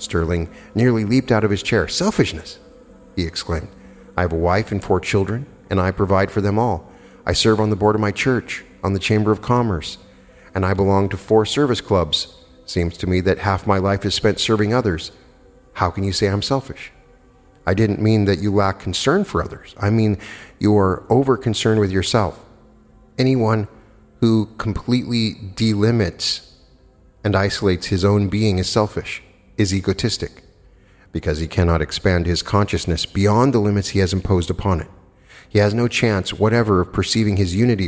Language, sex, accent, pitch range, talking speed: English, male, American, 95-110 Hz, 180 wpm